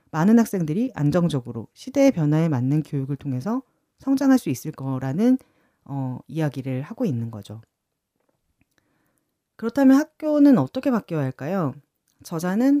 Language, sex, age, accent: Korean, female, 40-59, native